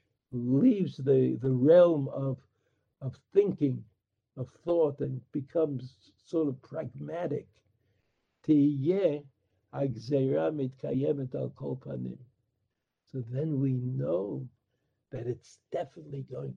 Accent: American